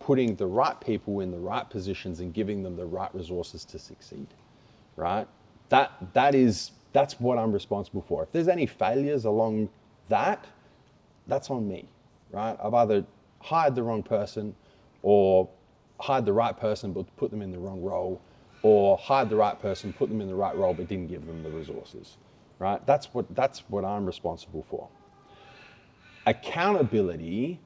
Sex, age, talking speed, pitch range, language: male, 30-49, 165 wpm, 95-135 Hz, English